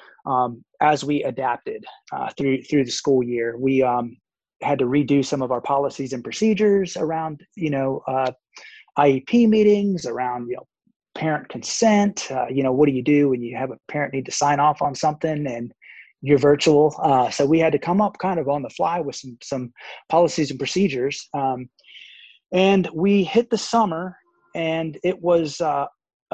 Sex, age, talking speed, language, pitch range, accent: male, 20-39, 190 wpm, English, 135-180 Hz, American